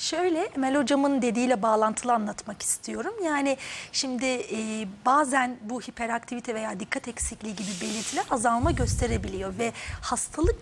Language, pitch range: Turkish, 230-335 Hz